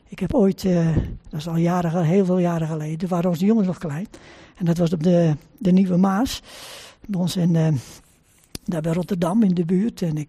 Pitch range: 175-230 Hz